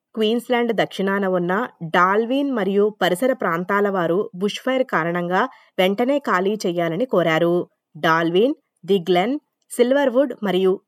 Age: 20-39